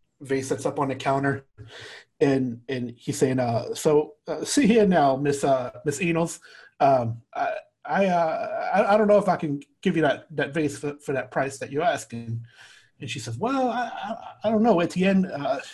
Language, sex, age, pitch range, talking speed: English, male, 30-49, 125-165 Hz, 215 wpm